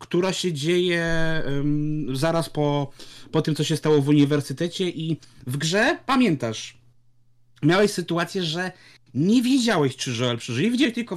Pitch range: 125-180 Hz